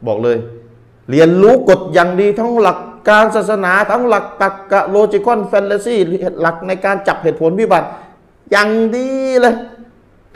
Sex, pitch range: male, 130-205 Hz